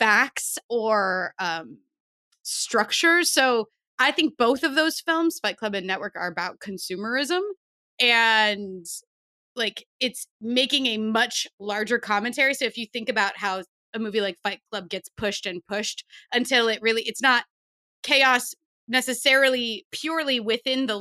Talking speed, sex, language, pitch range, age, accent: 145 wpm, female, English, 200-260 Hz, 20-39, American